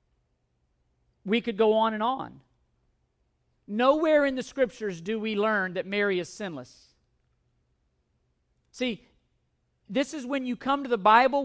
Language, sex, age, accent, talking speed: English, male, 40-59, American, 135 wpm